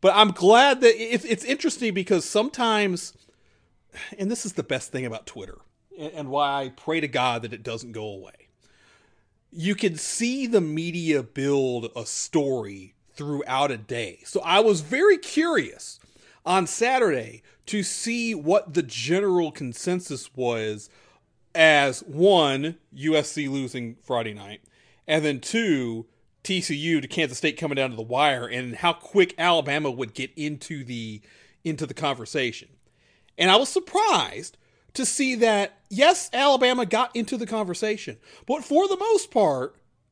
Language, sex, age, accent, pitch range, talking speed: English, male, 40-59, American, 135-225 Hz, 150 wpm